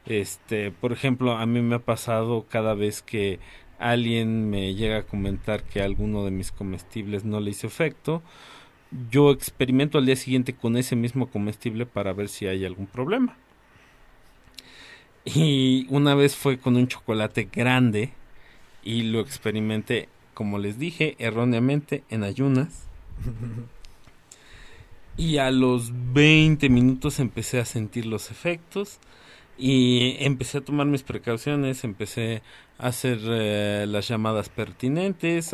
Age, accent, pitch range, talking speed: 40-59, Mexican, 110-135 Hz, 135 wpm